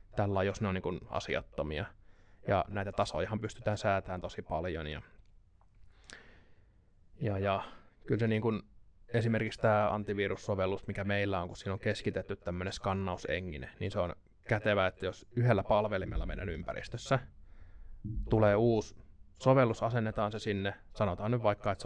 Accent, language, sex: native, Finnish, male